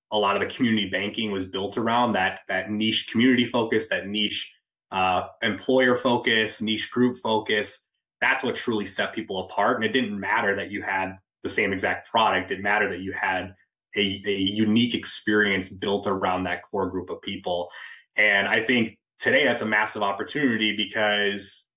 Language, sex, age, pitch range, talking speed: English, male, 20-39, 100-110 Hz, 175 wpm